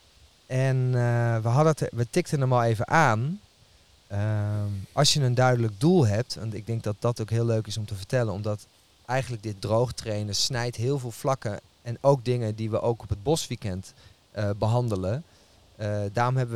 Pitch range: 105-125 Hz